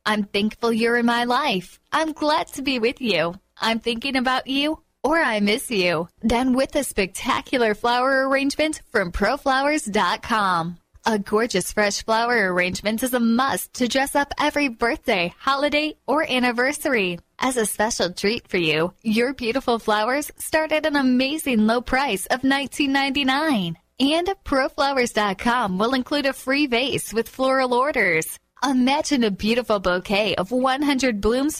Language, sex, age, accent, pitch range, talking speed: English, female, 10-29, American, 210-275 Hz, 150 wpm